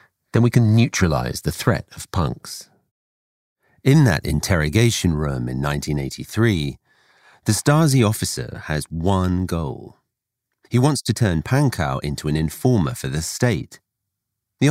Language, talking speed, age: English, 130 wpm, 40-59